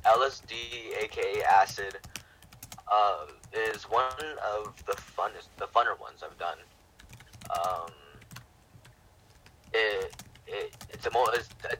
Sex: male